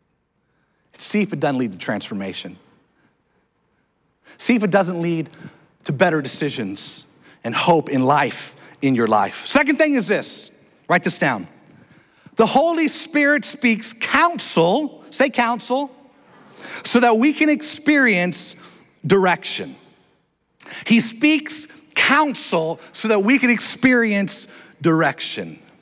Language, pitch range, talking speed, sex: English, 165-240 Hz, 120 wpm, male